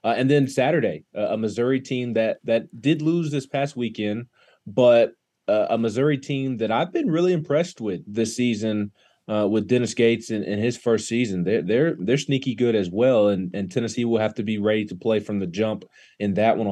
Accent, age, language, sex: American, 30-49, English, male